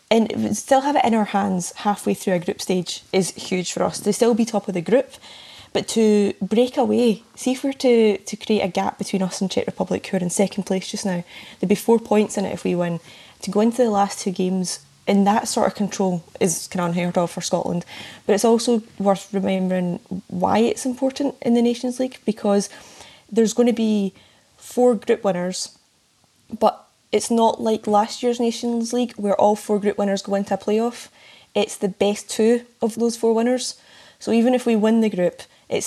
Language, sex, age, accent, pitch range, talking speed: English, female, 10-29, British, 190-230 Hz, 215 wpm